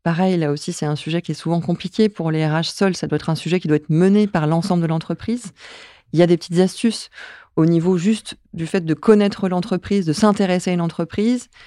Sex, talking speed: female, 235 wpm